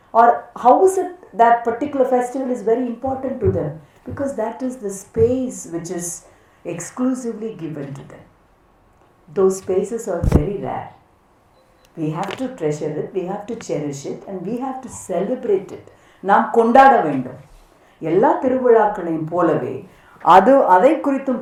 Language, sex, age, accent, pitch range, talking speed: Tamil, female, 50-69, native, 150-230 Hz, 180 wpm